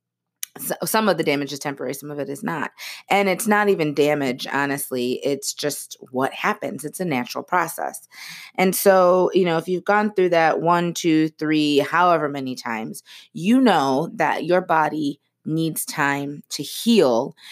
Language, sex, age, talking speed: English, female, 30-49, 170 wpm